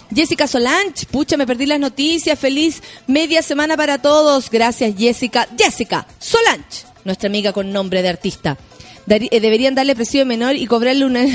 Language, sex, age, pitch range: Spanish, female, 30-49, 235-305 Hz